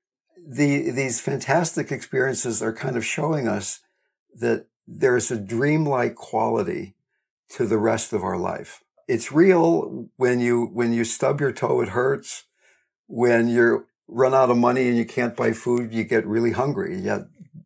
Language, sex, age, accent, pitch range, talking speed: English, male, 60-79, American, 115-140 Hz, 160 wpm